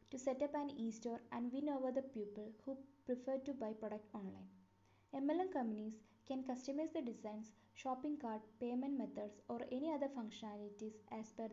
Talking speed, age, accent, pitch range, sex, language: 165 wpm, 20-39, Indian, 205-260 Hz, female, English